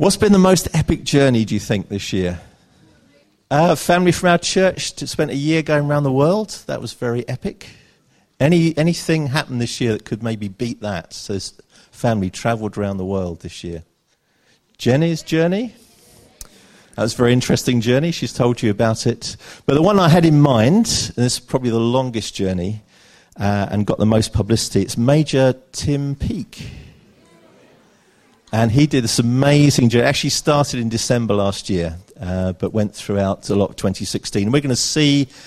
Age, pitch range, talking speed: 50-69, 100-145 Hz, 180 wpm